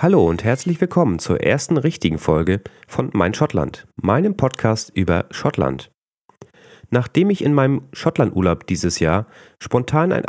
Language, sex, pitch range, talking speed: German, male, 95-135 Hz, 140 wpm